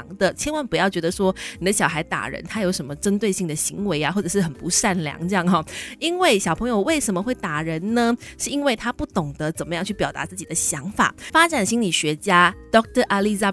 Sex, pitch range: female, 170-235 Hz